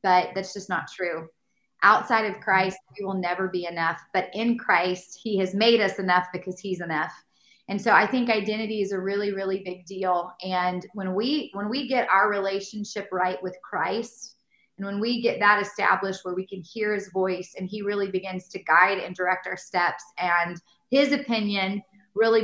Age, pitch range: 20-39, 180-215 Hz